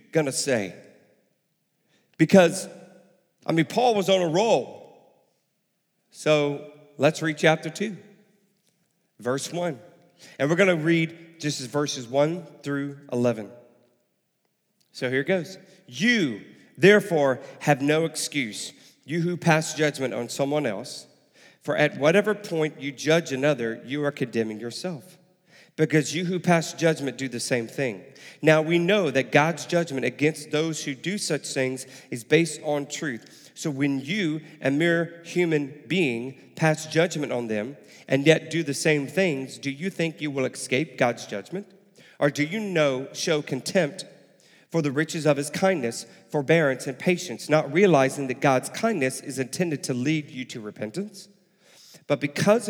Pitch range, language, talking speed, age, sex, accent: 140-180 Hz, English, 155 wpm, 40-59, male, American